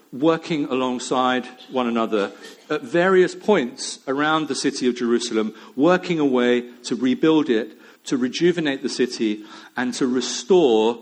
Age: 40-59